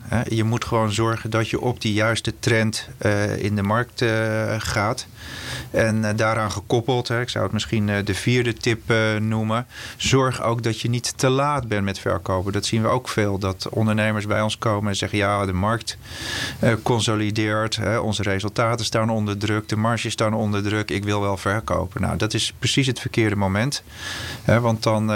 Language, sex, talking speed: Dutch, male, 175 wpm